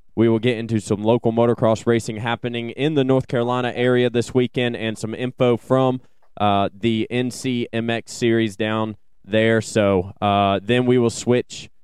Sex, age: male, 20-39